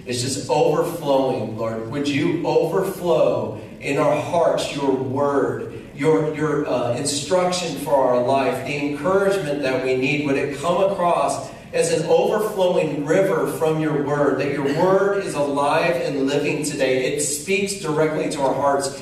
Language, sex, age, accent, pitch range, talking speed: English, male, 40-59, American, 125-170 Hz, 155 wpm